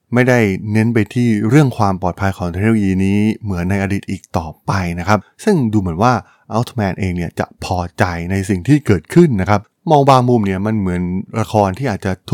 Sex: male